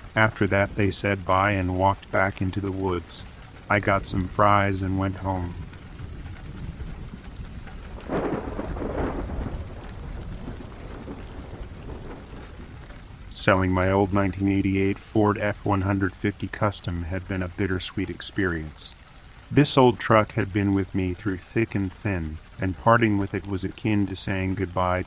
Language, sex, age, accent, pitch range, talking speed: English, male, 40-59, American, 90-105 Hz, 120 wpm